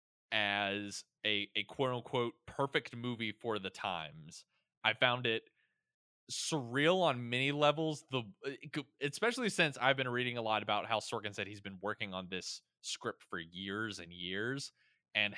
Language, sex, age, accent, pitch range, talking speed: English, male, 20-39, American, 100-120 Hz, 150 wpm